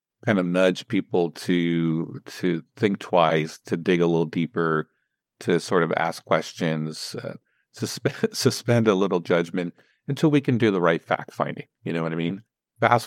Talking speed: 170 wpm